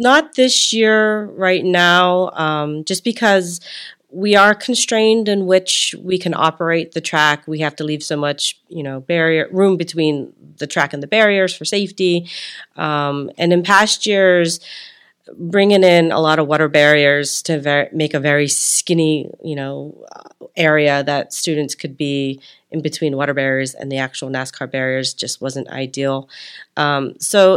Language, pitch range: English, 145-185 Hz